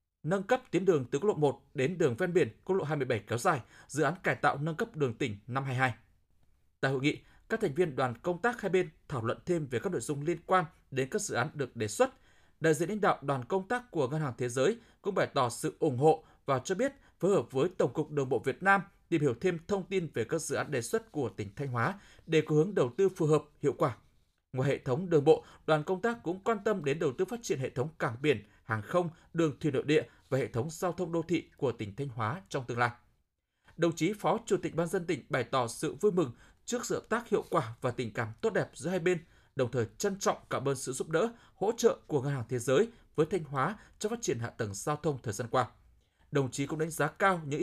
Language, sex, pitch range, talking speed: Vietnamese, male, 130-185 Hz, 265 wpm